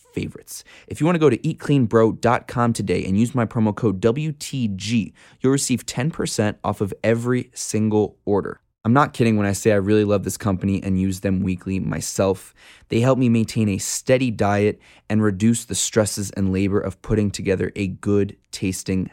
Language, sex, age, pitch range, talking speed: English, male, 20-39, 100-125 Hz, 180 wpm